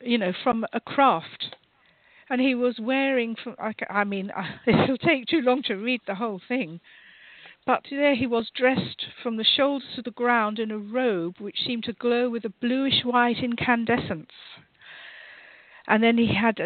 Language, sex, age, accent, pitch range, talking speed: English, female, 50-69, British, 215-255 Hz, 175 wpm